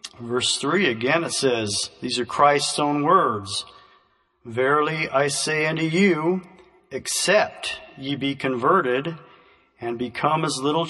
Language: English